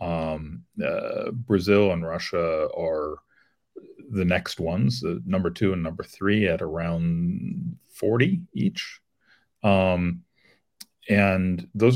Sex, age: male, 40-59